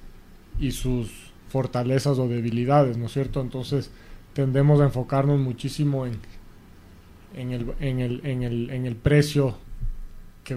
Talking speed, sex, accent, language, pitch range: 100 wpm, male, Mexican, English, 120-145 Hz